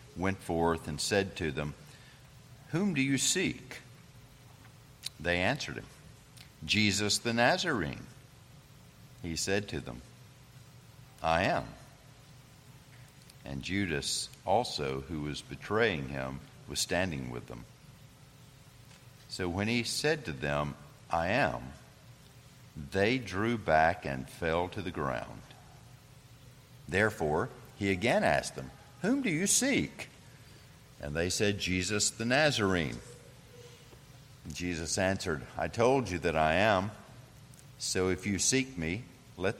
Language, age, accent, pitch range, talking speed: English, 60-79, American, 85-130 Hz, 120 wpm